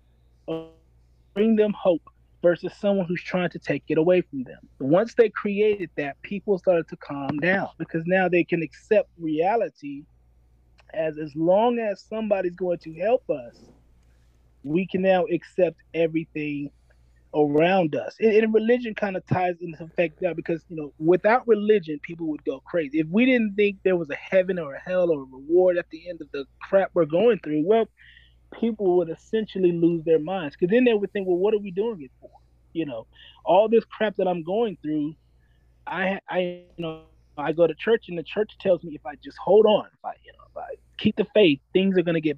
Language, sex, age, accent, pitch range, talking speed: English, male, 30-49, American, 150-200 Hz, 205 wpm